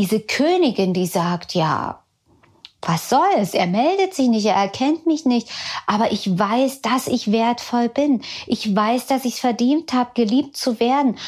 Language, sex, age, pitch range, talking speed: German, female, 40-59, 205-270 Hz, 175 wpm